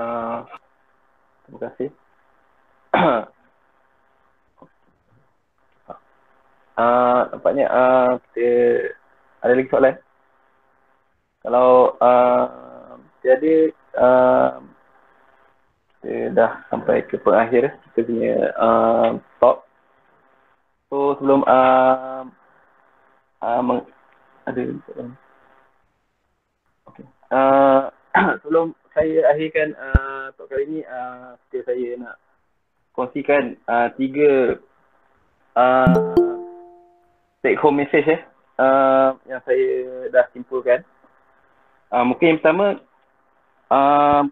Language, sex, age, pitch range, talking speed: Malay, male, 20-39, 125-155 Hz, 85 wpm